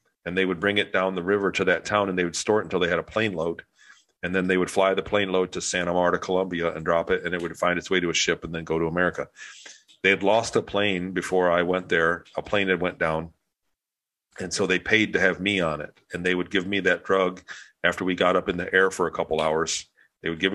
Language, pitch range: English, 85-95 Hz